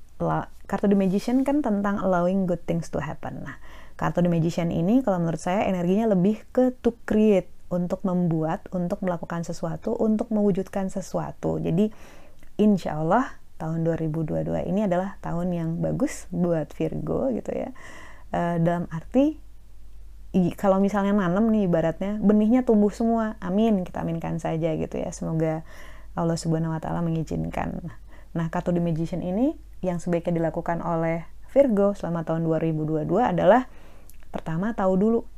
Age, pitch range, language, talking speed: 30-49, 165-205 Hz, Indonesian, 140 wpm